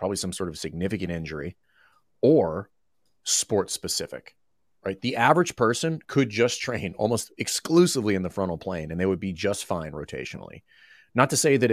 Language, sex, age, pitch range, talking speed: English, male, 30-49, 90-115 Hz, 170 wpm